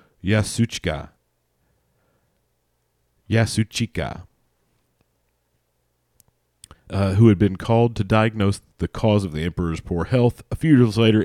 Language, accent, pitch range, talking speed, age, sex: English, American, 90-110 Hz, 105 wpm, 40-59, male